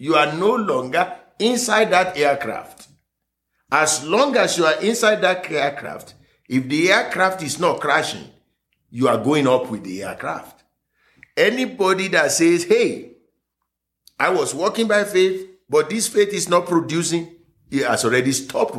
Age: 50-69